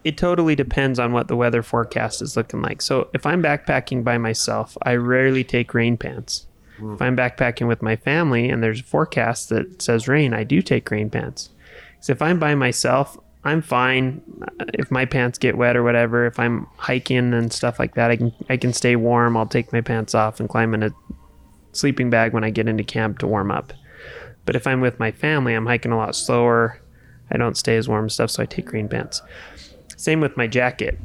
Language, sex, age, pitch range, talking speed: English, male, 20-39, 115-130 Hz, 220 wpm